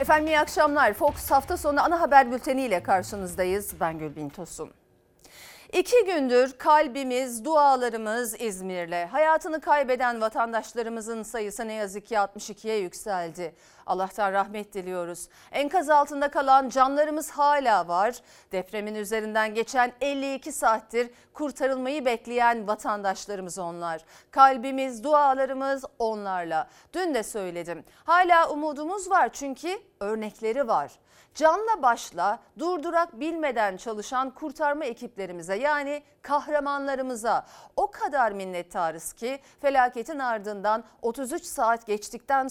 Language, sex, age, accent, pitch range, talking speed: Turkish, female, 40-59, native, 210-300 Hz, 105 wpm